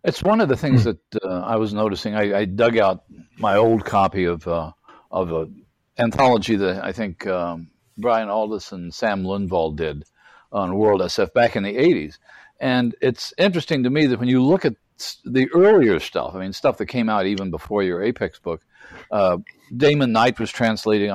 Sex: male